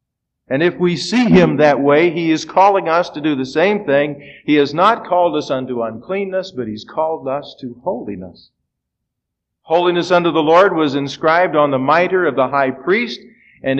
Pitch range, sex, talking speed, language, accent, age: 130-175 Hz, male, 185 wpm, English, American, 50-69